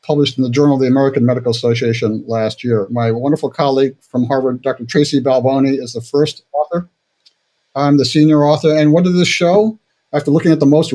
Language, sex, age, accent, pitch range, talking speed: English, male, 50-69, American, 145-175 Hz, 205 wpm